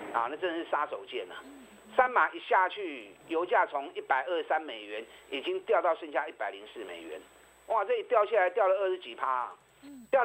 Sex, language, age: male, Chinese, 50-69